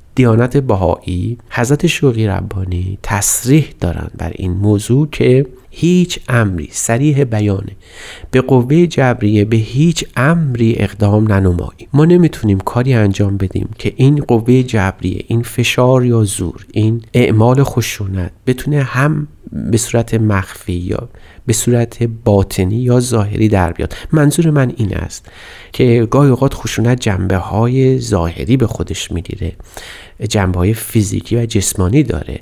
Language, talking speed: Persian, 135 wpm